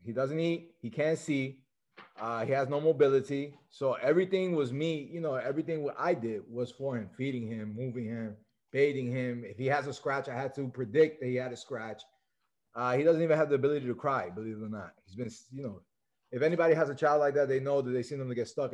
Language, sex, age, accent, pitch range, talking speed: English, male, 30-49, American, 125-145 Hz, 245 wpm